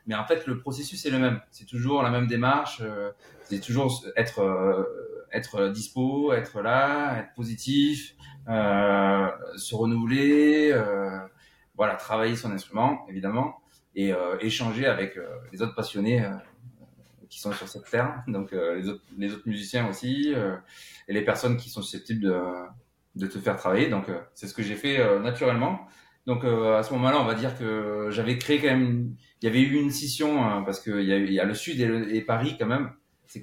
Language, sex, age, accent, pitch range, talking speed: French, male, 30-49, French, 105-130 Hz, 195 wpm